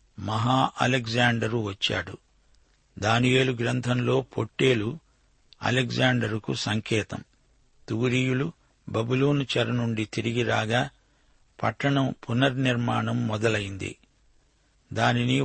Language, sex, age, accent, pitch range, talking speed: Telugu, male, 50-69, native, 115-130 Hz, 65 wpm